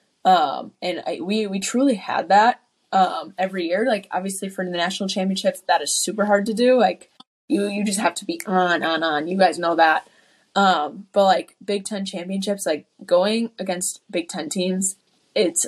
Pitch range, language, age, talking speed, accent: 180-205 Hz, English, 20-39, 190 wpm, American